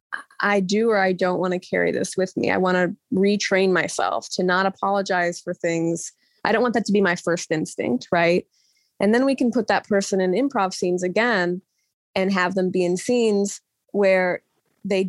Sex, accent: female, American